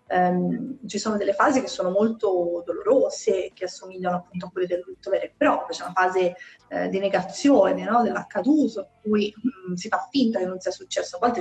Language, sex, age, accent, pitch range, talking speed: Italian, female, 20-39, native, 185-220 Hz, 205 wpm